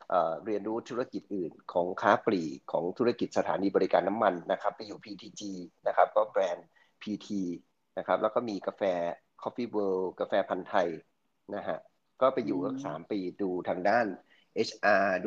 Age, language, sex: 30-49, Thai, male